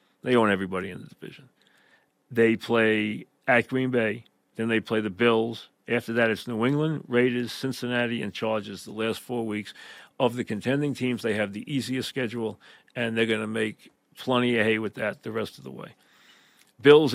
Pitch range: 115-135 Hz